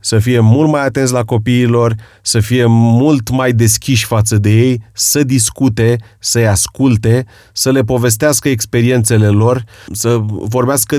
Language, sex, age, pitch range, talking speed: Romanian, male, 30-49, 105-125 Hz, 140 wpm